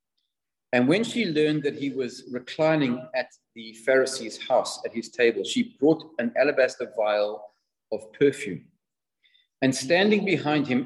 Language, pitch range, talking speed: English, 120-190 Hz, 145 wpm